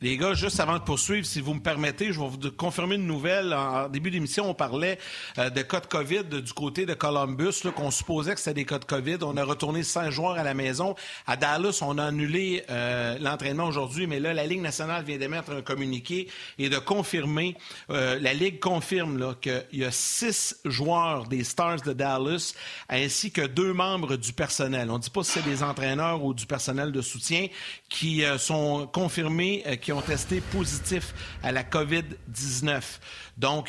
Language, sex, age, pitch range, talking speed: French, male, 50-69, 135-170 Hz, 205 wpm